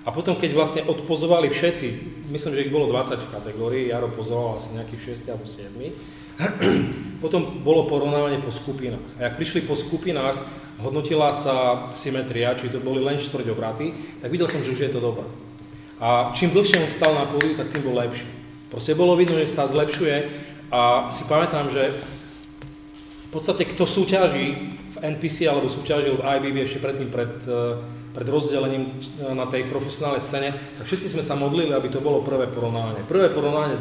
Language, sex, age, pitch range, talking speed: Czech, male, 30-49, 120-150 Hz, 175 wpm